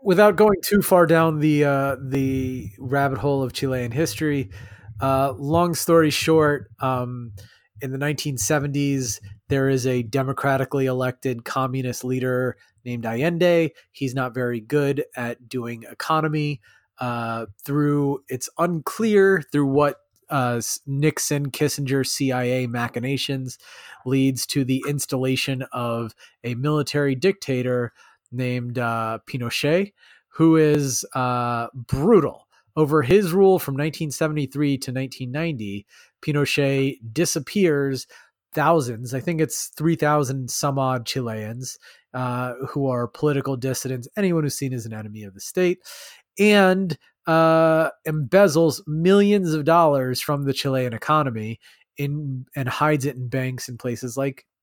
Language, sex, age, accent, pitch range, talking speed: English, male, 30-49, American, 125-155 Hz, 125 wpm